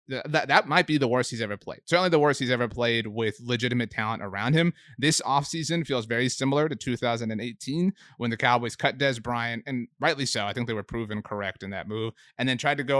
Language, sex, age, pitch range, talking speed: English, male, 30-49, 110-140 Hz, 230 wpm